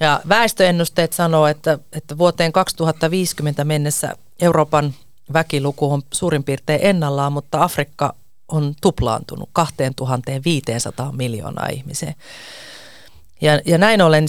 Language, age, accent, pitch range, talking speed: Finnish, 30-49, native, 135-170 Hz, 100 wpm